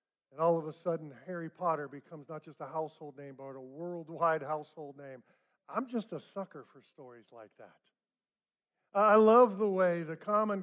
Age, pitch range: 50-69, 155-215 Hz